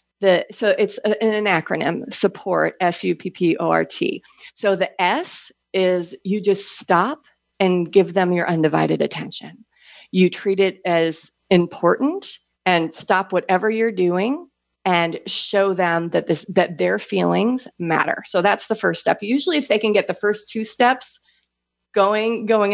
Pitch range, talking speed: 175-215 Hz, 165 wpm